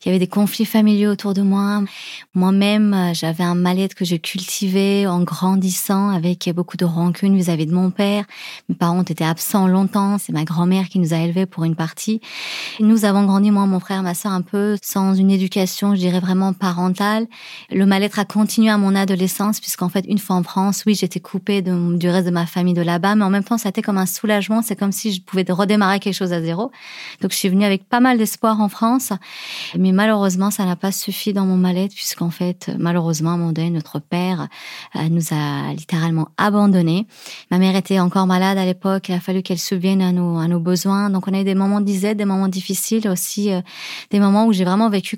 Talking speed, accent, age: 225 wpm, French, 30-49